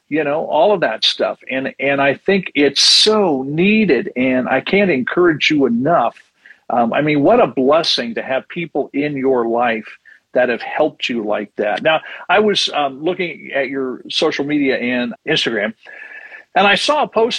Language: English